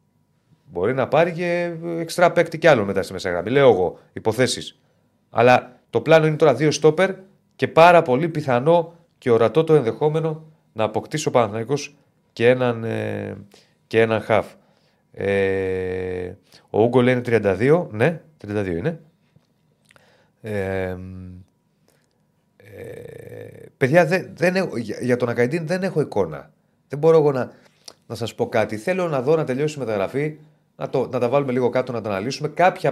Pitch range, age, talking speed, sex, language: 110-160 Hz, 30-49, 150 wpm, male, Greek